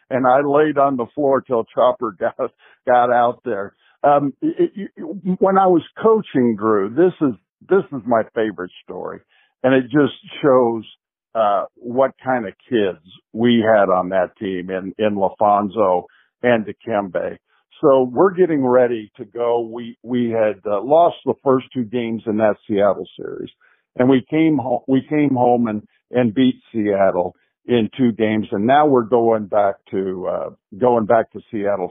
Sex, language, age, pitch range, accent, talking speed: male, English, 50-69, 110-135 Hz, American, 170 wpm